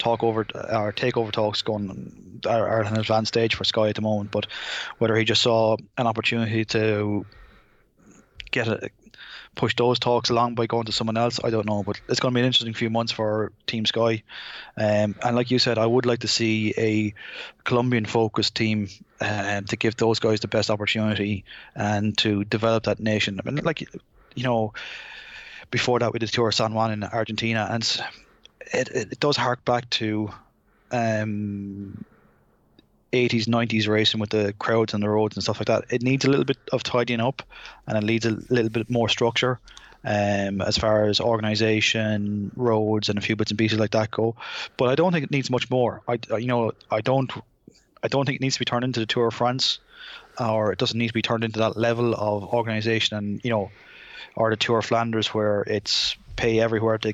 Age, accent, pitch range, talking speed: 20-39, Irish, 105-120 Hz, 205 wpm